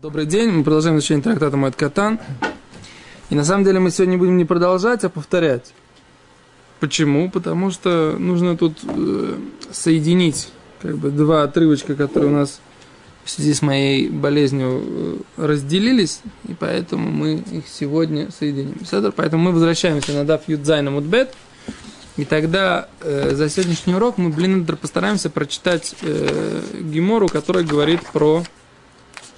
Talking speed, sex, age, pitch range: 130 wpm, male, 20-39, 145-185 Hz